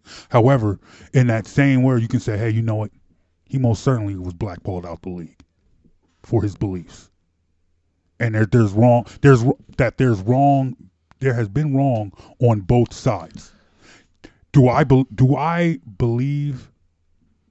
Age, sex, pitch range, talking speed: 20-39, male, 90-140 Hz, 145 wpm